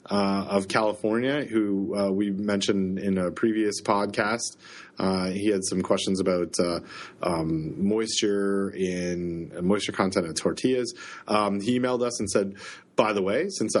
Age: 30-49